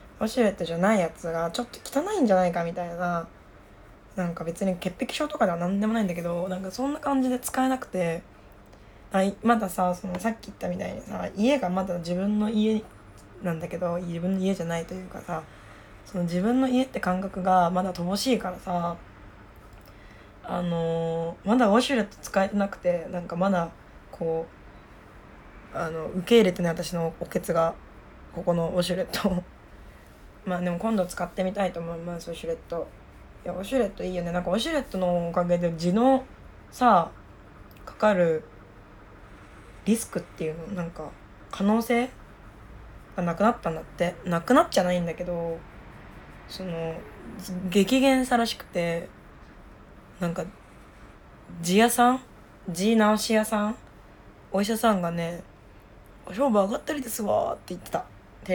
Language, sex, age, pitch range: Japanese, female, 20-39, 165-210 Hz